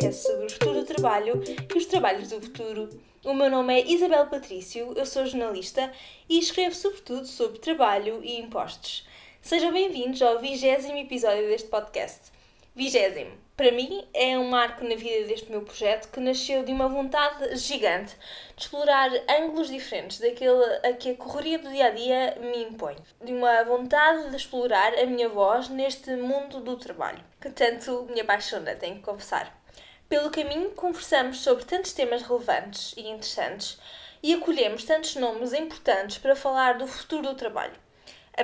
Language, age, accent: Portuguese, 10-29, Brazilian